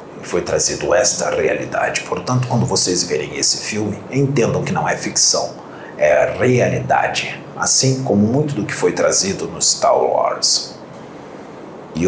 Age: 50-69